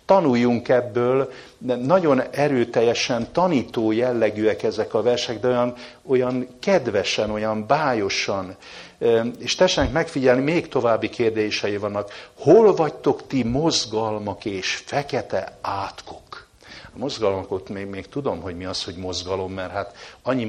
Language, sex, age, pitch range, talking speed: English, male, 60-79, 95-130 Hz, 125 wpm